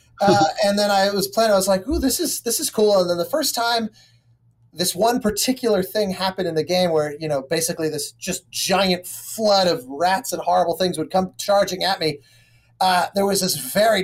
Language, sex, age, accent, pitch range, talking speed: English, male, 30-49, American, 145-200 Hz, 220 wpm